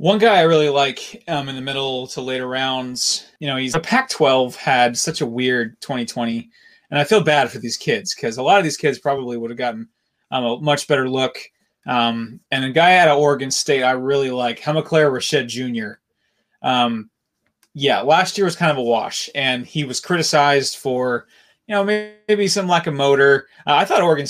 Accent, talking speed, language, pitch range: American, 205 wpm, English, 130-165 Hz